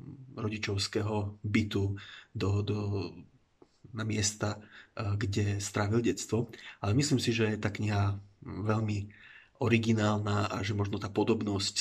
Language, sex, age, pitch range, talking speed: Slovak, male, 30-49, 100-110 Hz, 115 wpm